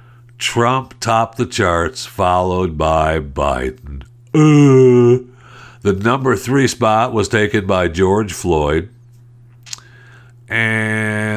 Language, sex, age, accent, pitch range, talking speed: English, male, 60-79, American, 85-120 Hz, 95 wpm